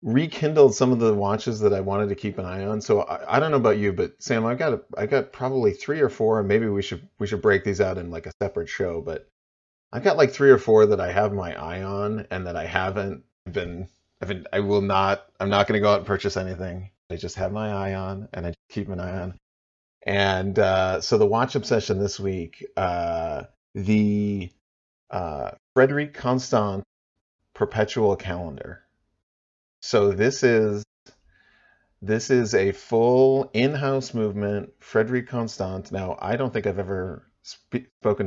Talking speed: 195 wpm